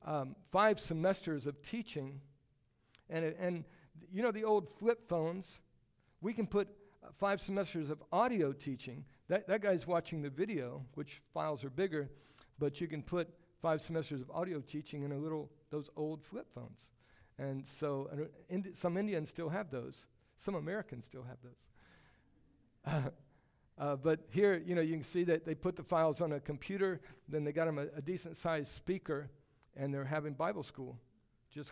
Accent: American